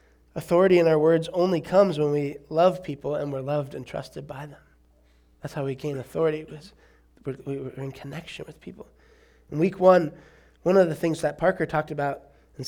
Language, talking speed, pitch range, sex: English, 190 wpm, 140-170 Hz, male